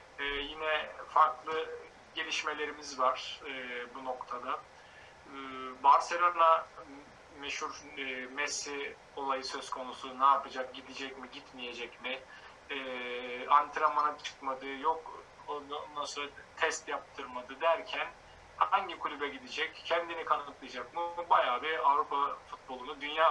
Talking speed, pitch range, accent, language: 110 wpm, 130-155 Hz, native, Turkish